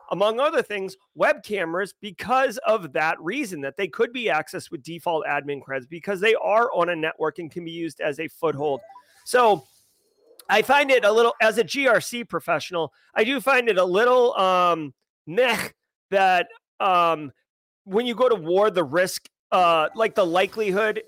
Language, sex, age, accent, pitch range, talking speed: English, male, 30-49, American, 180-240 Hz, 175 wpm